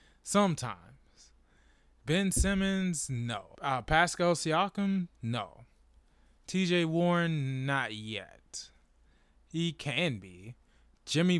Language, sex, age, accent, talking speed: English, male, 20-39, American, 85 wpm